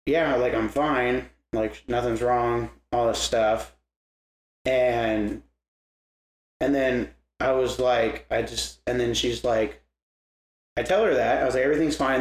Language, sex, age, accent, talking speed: English, male, 30-49, American, 150 wpm